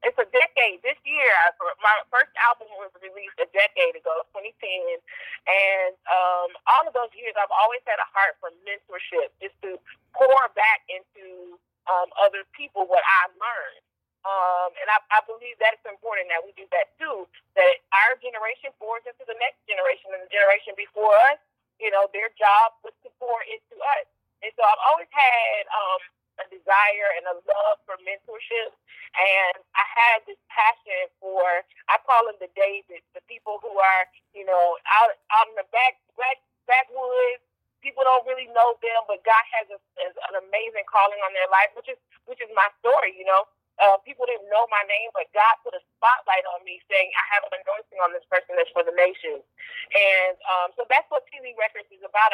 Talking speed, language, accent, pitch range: 195 wpm, English, American, 195-280 Hz